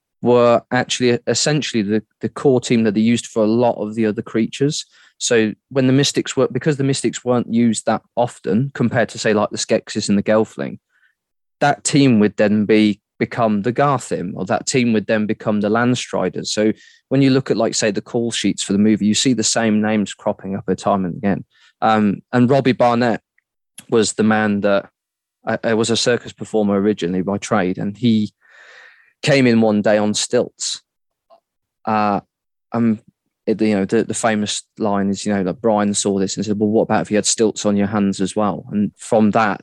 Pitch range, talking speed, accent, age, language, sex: 105-120 Hz, 205 wpm, British, 20-39, English, male